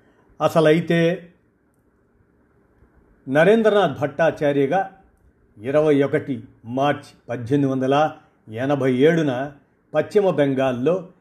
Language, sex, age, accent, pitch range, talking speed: Telugu, male, 50-69, native, 125-155 Hz, 65 wpm